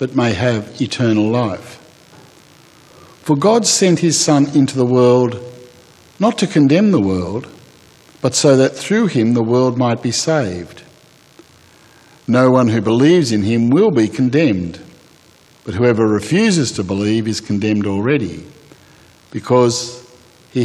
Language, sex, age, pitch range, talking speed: English, male, 60-79, 110-140 Hz, 135 wpm